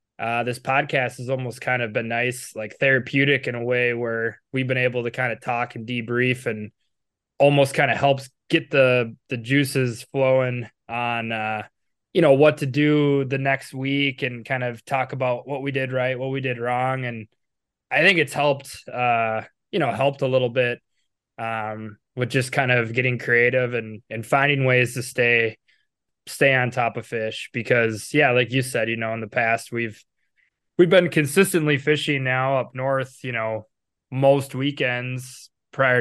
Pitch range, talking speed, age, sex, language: 115-135 Hz, 185 wpm, 20-39, male, English